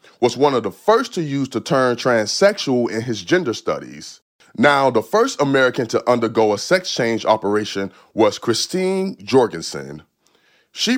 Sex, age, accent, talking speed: male, 30-49, American, 155 wpm